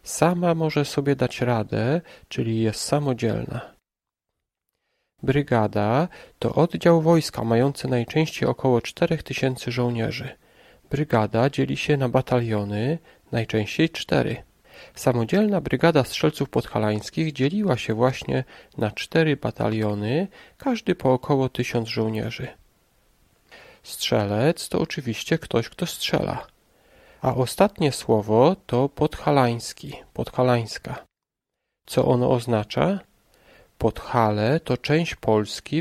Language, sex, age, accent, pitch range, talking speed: Polish, male, 40-59, native, 115-160 Hz, 95 wpm